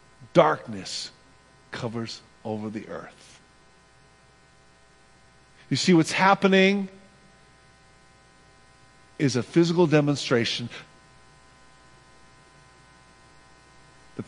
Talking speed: 60 wpm